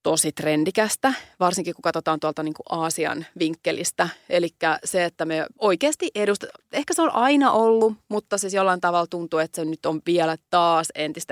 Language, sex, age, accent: Finnish, female, 30-49, native